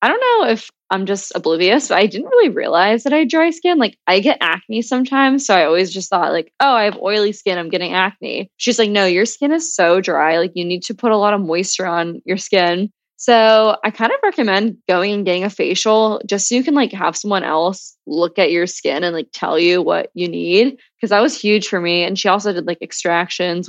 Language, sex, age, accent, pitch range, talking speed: English, female, 10-29, American, 175-220 Hz, 245 wpm